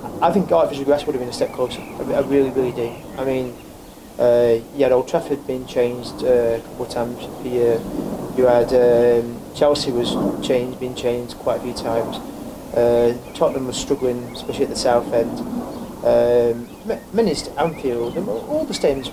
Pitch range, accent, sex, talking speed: 125-205 Hz, British, male, 175 wpm